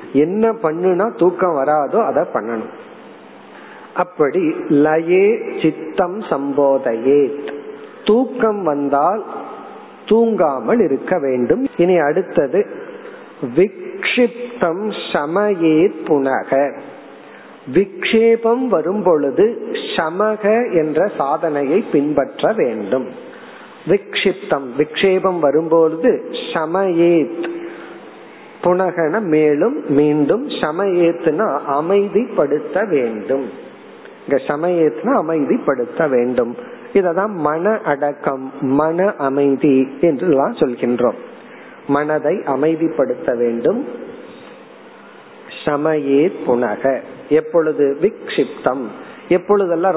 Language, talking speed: Tamil, 55 wpm